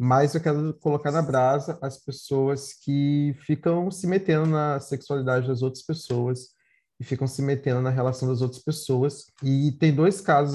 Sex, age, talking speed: male, 20-39, 170 wpm